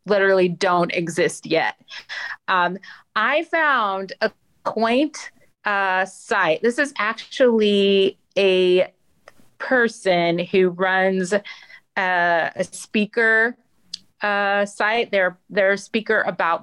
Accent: American